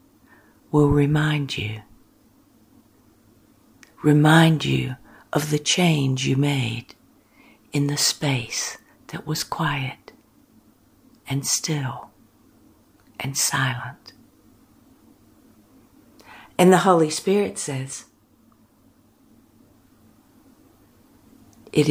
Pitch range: 135-165 Hz